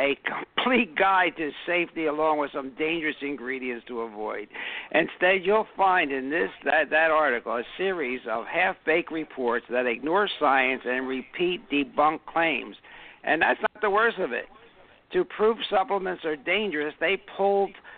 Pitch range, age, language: 140-185 Hz, 60-79, English